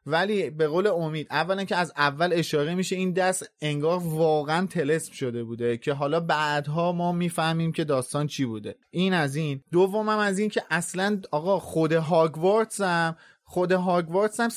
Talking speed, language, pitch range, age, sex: 160 wpm, Persian, 155-200 Hz, 30-49, male